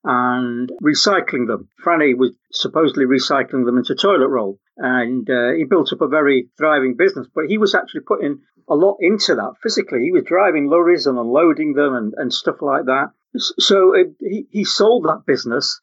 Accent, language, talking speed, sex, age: British, English, 190 wpm, male, 50-69